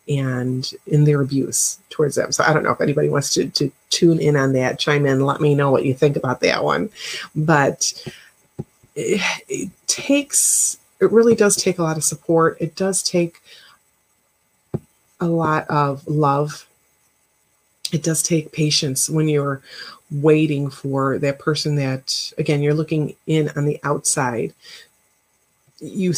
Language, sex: English, female